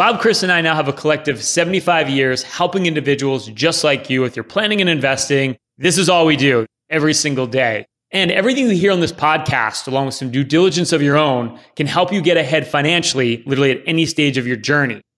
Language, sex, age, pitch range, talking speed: English, male, 30-49, 145-170 Hz, 220 wpm